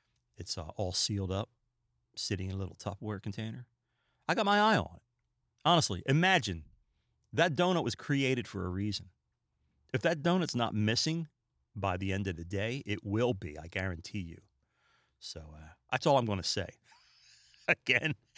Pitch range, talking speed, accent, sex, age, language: 100-140 Hz, 170 wpm, American, male, 40-59, English